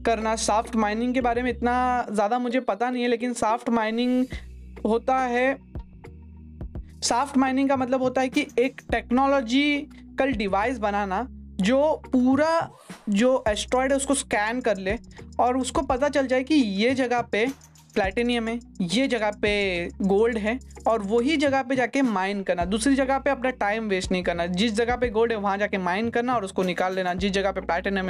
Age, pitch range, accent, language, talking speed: 20-39, 205-250 Hz, native, Hindi, 185 wpm